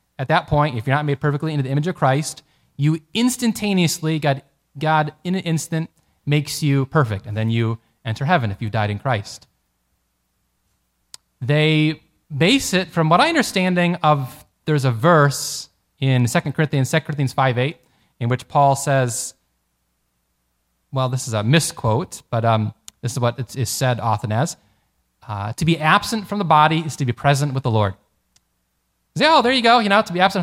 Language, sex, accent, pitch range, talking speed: English, male, American, 110-155 Hz, 180 wpm